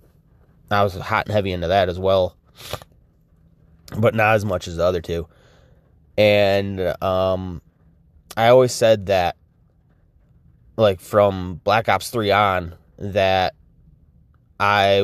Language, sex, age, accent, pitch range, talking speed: English, male, 20-39, American, 90-115 Hz, 125 wpm